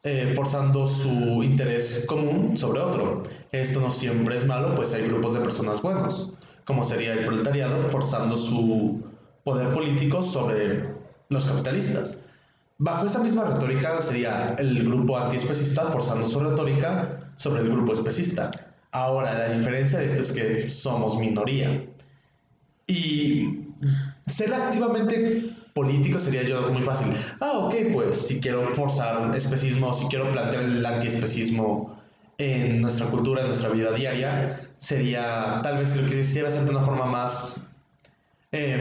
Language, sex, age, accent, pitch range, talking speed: Spanish, male, 20-39, Mexican, 120-145 Hz, 145 wpm